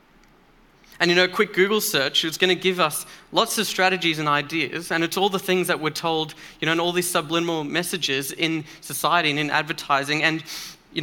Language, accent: English, Australian